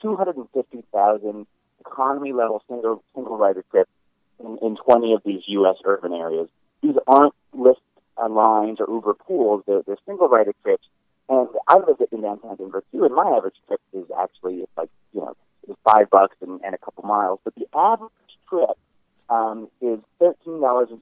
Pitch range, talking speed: 105-145 Hz, 155 wpm